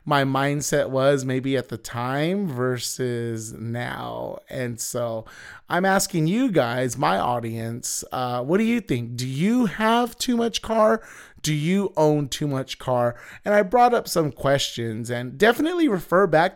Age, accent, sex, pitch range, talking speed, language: 30-49, American, male, 125-160 Hz, 160 wpm, English